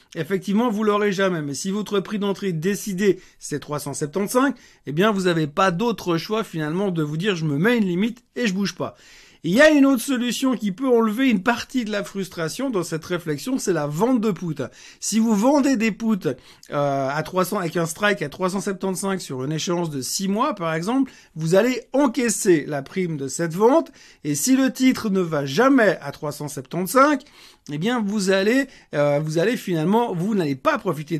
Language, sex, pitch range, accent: French, male, 160-230 Hz, French